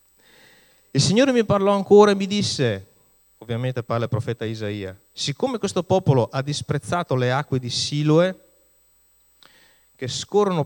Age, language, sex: 30-49, Italian, male